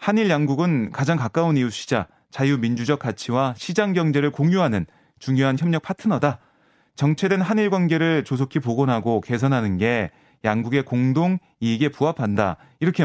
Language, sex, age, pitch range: Korean, male, 30-49, 125-170 Hz